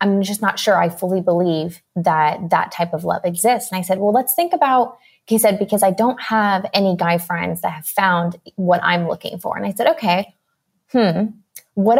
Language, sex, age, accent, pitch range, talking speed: English, female, 20-39, American, 180-220 Hz, 210 wpm